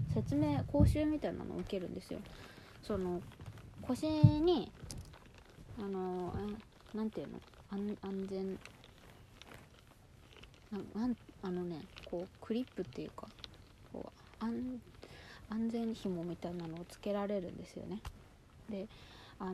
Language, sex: Japanese, female